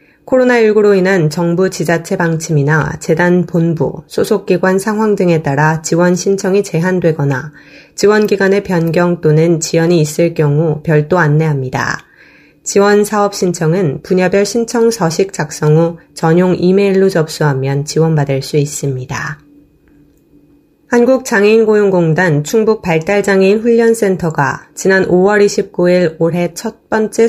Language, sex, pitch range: Korean, female, 155-200 Hz